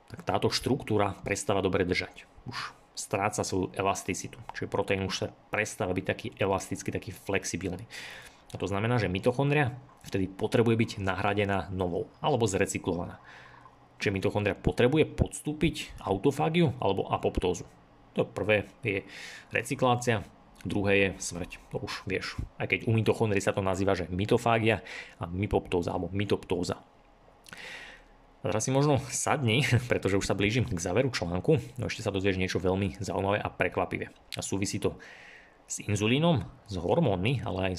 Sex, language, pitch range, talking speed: male, Slovak, 95-120 Hz, 145 wpm